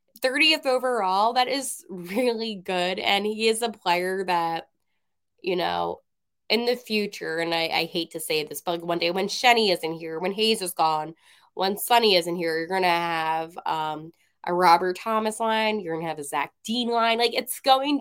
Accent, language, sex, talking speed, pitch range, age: American, English, female, 195 wpm, 165-225 Hz, 20-39